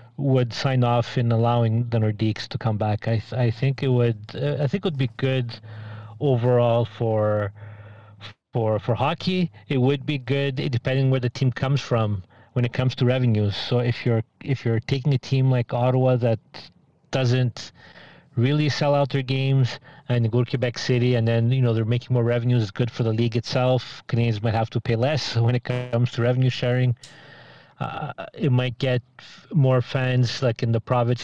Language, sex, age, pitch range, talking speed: English, male, 30-49, 115-135 Hz, 195 wpm